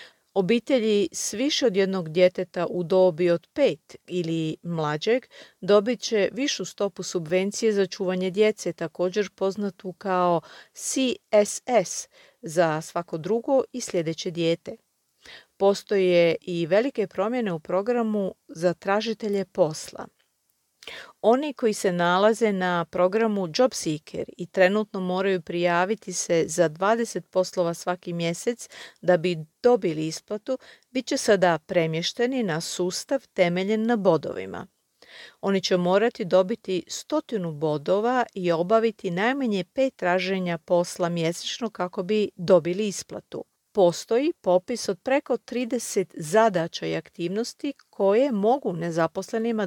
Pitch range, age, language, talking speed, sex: 175-225 Hz, 40-59, Croatian, 115 wpm, female